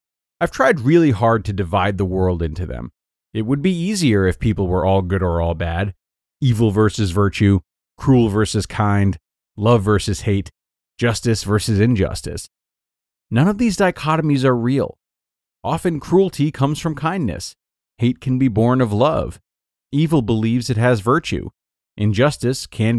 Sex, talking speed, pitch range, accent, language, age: male, 150 wpm, 100-135 Hz, American, English, 30-49